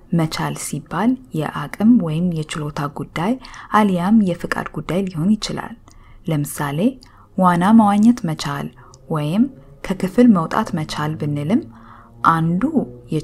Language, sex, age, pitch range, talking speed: English, female, 20-39, 150-225 Hz, 130 wpm